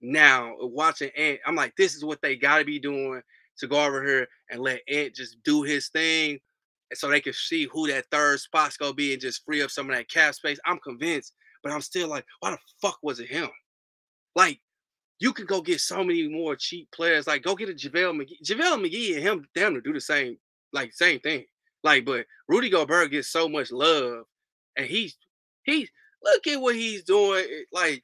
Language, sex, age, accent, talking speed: English, male, 20-39, American, 210 wpm